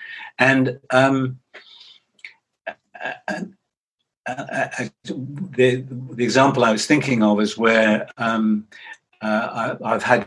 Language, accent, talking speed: English, British, 110 wpm